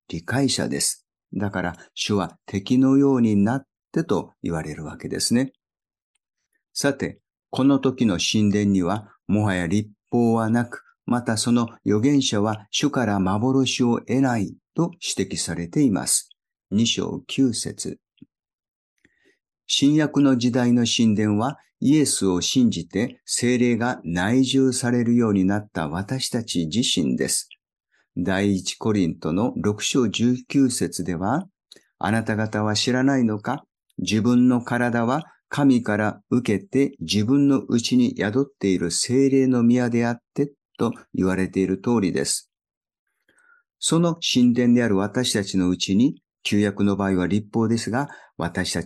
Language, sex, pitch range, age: Japanese, male, 100-130 Hz, 50-69